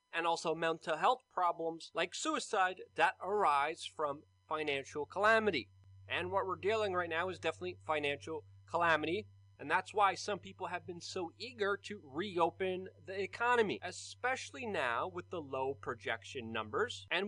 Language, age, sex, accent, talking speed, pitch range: English, 30-49, male, American, 150 wpm, 155-205 Hz